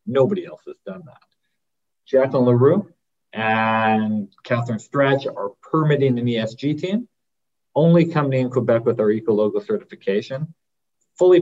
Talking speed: 125 wpm